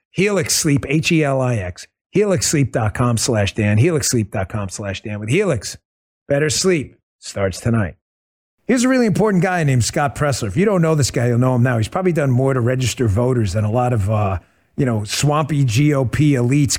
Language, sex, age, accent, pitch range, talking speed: English, male, 40-59, American, 110-155 Hz, 195 wpm